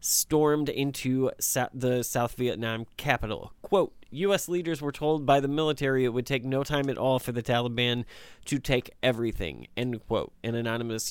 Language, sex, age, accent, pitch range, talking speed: English, male, 20-39, American, 120-145 Hz, 165 wpm